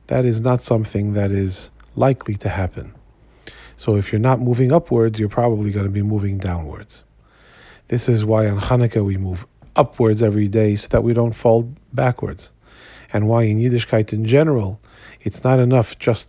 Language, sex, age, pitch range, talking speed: English, male, 40-59, 105-125 Hz, 175 wpm